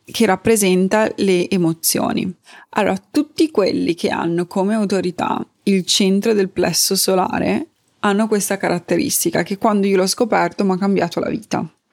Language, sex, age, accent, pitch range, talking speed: Italian, female, 20-39, native, 175-215 Hz, 145 wpm